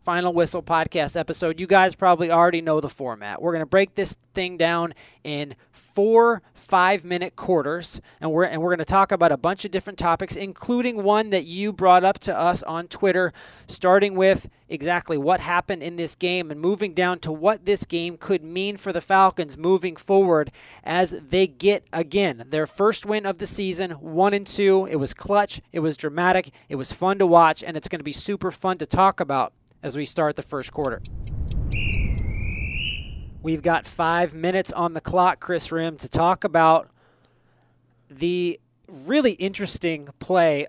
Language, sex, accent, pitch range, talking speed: English, male, American, 155-190 Hz, 180 wpm